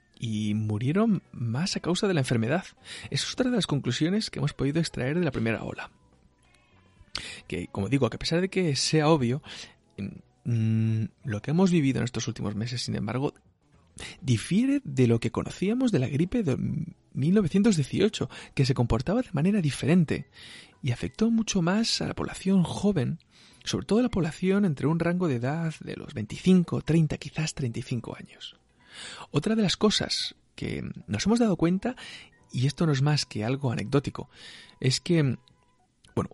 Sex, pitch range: male, 120-170 Hz